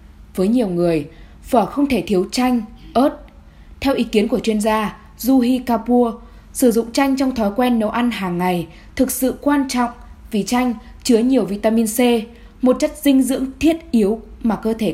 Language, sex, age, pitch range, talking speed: Vietnamese, female, 10-29, 215-265 Hz, 185 wpm